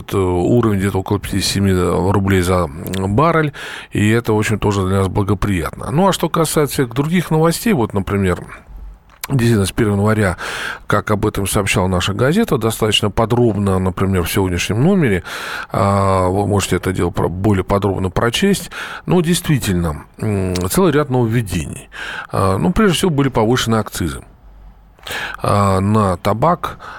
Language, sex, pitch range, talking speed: Russian, male, 95-140 Hz, 130 wpm